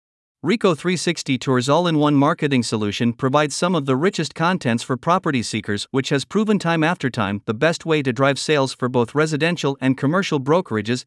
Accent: American